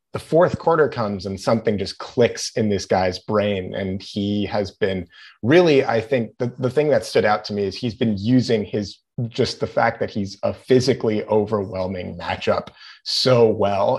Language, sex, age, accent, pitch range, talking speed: English, male, 30-49, American, 100-120 Hz, 185 wpm